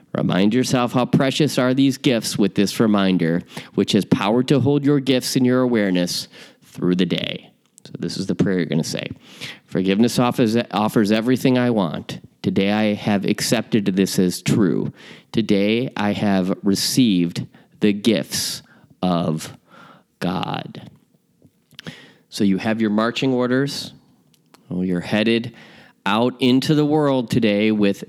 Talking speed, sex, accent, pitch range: 145 wpm, male, American, 95-125 Hz